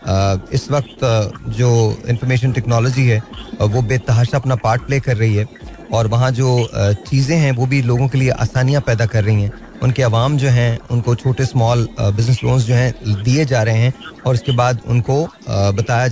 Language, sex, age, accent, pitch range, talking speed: Hindi, male, 30-49, native, 120-150 Hz, 195 wpm